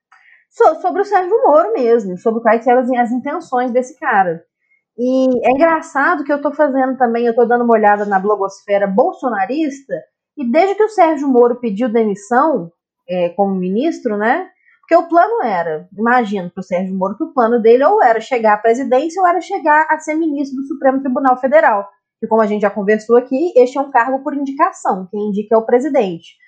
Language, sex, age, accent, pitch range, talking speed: Portuguese, female, 20-39, Brazilian, 220-315 Hz, 190 wpm